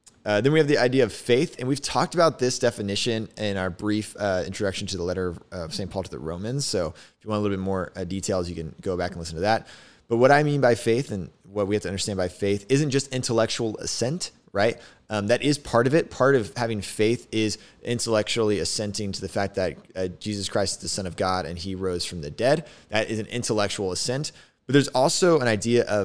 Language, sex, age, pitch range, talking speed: English, male, 20-39, 95-125 Hz, 250 wpm